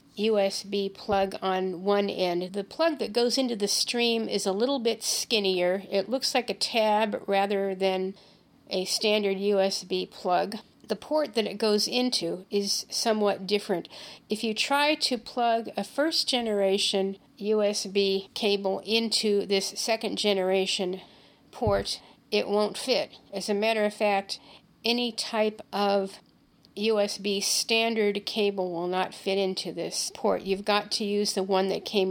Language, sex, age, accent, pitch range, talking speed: English, female, 50-69, American, 195-220 Hz, 150 wpm